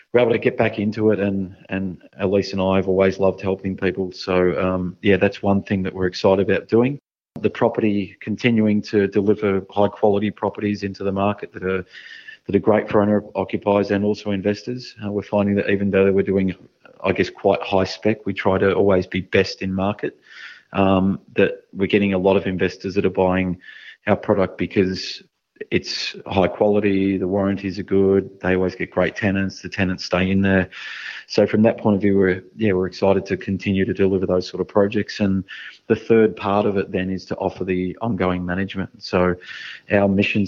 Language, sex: English, male